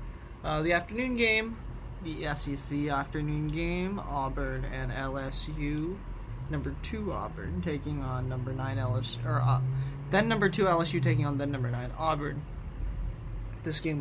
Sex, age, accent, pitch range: male, 20-39, American, 130-160 Hz